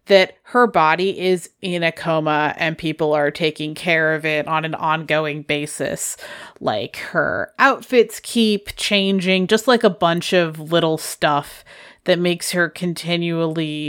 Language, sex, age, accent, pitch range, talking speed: English, female, 30-49, American, 150-195 Hz, 145 wpm